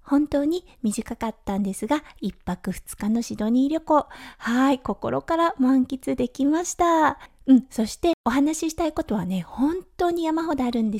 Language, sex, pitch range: Japanese, female, 210-295 Hz